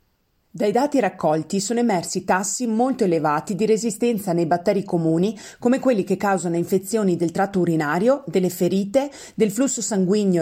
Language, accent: Italian, native